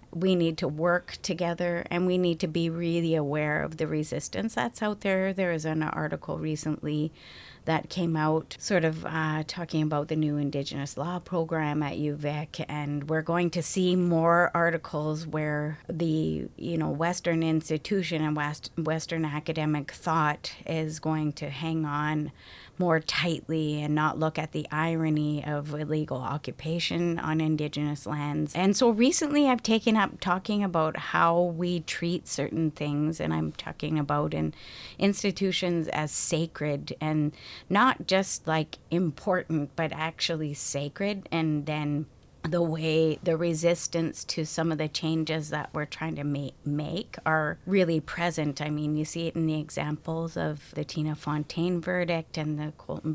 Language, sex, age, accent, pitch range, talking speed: English, female, 30-49, American, 150-170 Hz, 160 wpm